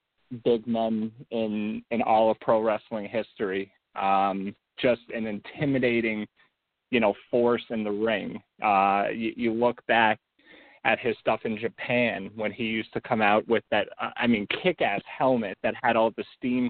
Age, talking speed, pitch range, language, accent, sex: 30-49, 165 wpm, 110-130 Hz, English, American, male